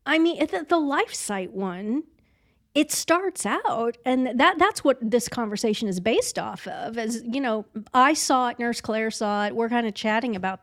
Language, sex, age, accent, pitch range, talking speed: English, female, 40-59, American, 210-280 Hz, 190 wpm